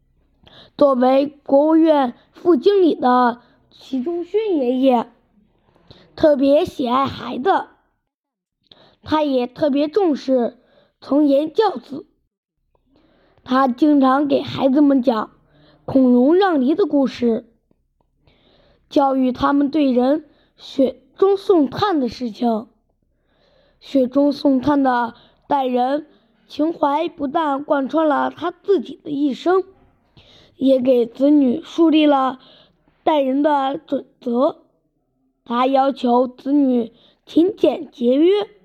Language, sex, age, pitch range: Chinese, female, 20-39, 245-300 Hz